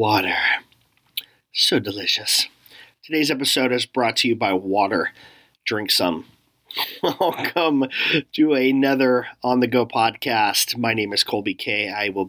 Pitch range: 110-155 Hz